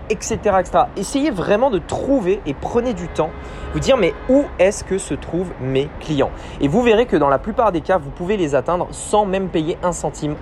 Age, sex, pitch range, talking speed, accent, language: 20-39, male, 150-205 Hz, 220 wpm, French, French